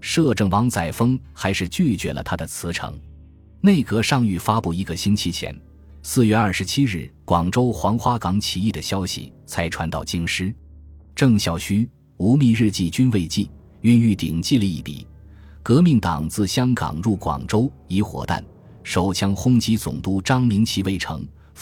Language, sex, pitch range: Chinese, male, 85-115 Hz